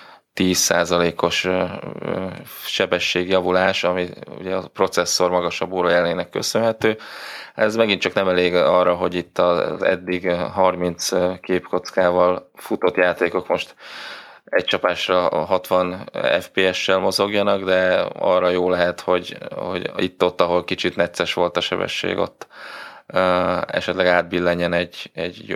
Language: Hungarian